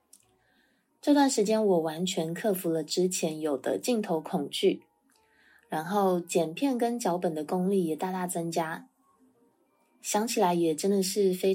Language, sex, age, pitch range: Chinese, female, 20-39, 165-215 Hz